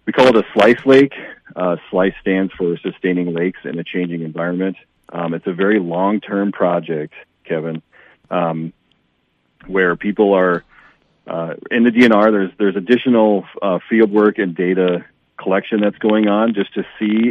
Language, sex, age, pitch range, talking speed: English, male, 40-59, 85-105 Hz, 160 wpm